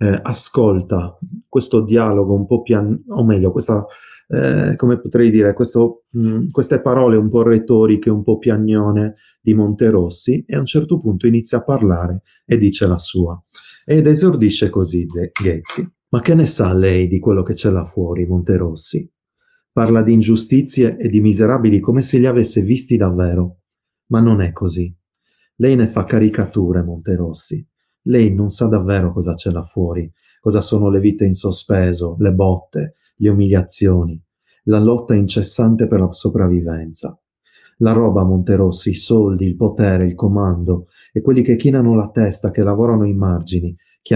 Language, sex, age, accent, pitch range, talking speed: Italian, male, 30-49, native, 95-115 Hz, 165 wpm